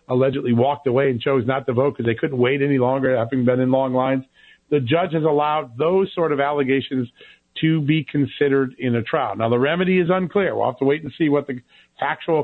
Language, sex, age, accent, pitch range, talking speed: English, male, 50-69, American, 125-150 Hz, 225 wpm